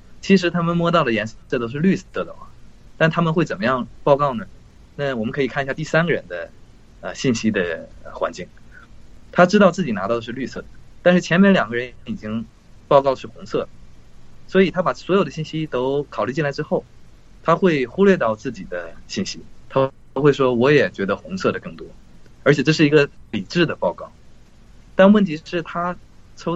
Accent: native